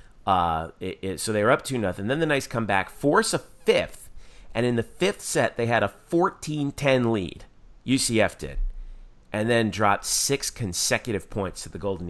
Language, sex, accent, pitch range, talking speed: English, male, American, 90-115 Hz, 190 wpm